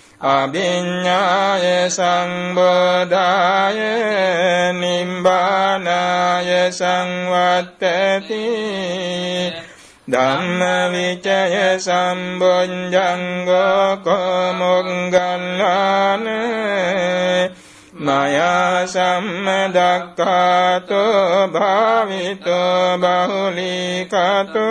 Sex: male